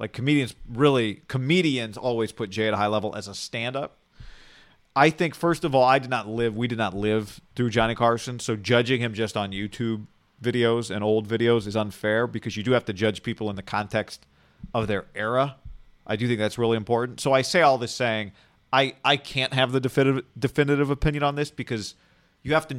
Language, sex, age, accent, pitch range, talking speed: English, male, 40-59, American, 110-135 Hz, 215 wpm